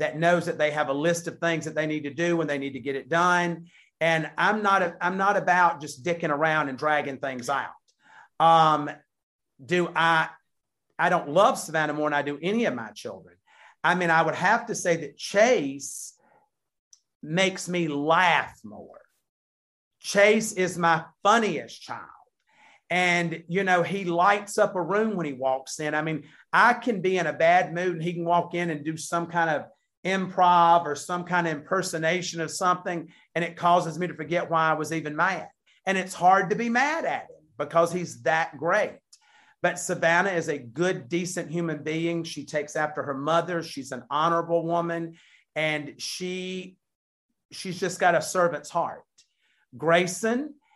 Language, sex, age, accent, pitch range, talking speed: English, male, 40-59, American, 155-180 Hz, 185 wpm